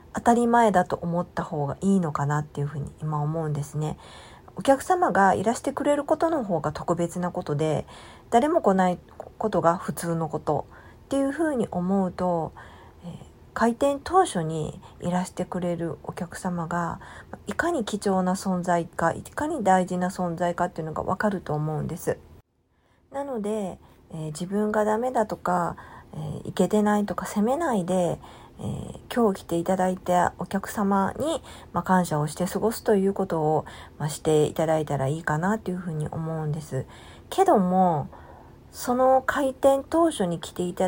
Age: 40-59